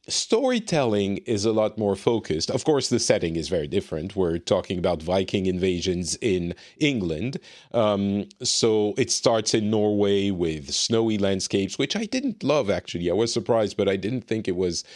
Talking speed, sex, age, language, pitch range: 175 wpm, male, 40-59, English, 95-120 Hz